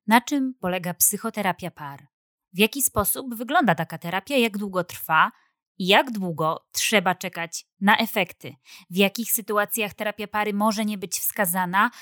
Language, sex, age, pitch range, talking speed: Polish, female, 20-39, 185-230 Hz, 150 wpm